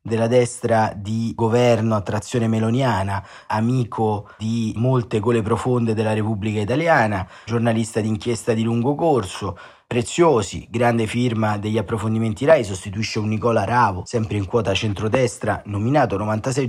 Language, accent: Italian, native